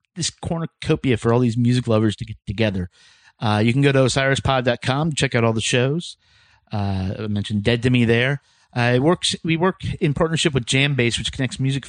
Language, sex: English, male